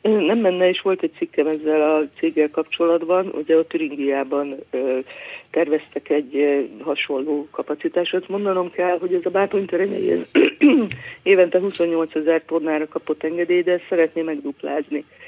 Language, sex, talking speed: Hungarian, female, 140 wpm